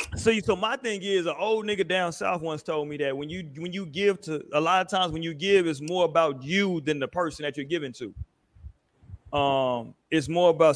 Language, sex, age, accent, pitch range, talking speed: English, male, 30-49, American, 135-190 Hz, 235 wpm